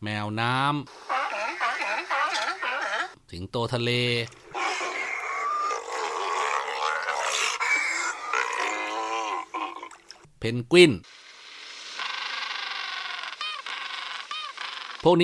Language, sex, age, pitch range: Thai, male, 30-49, 105-155 Hz